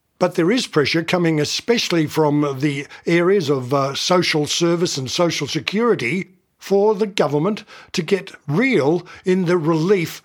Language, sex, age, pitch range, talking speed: English, male, 60-79, 150-185 Hz, 145 wpm